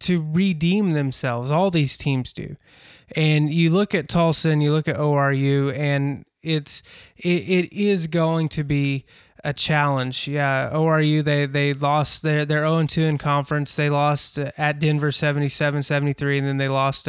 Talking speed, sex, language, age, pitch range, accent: 160 wpm, male, English, 20-39, 140-155 Hz, American